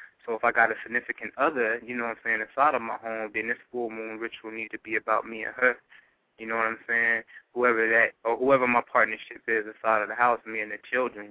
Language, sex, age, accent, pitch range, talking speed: English, male, 20-39, American, 110-120 Hz, 255 wpm